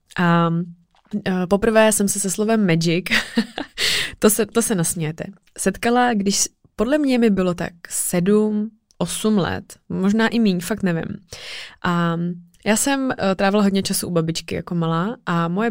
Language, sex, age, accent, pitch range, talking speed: Czech, female, 20-39, native, 170-200 Hz, 155 wpm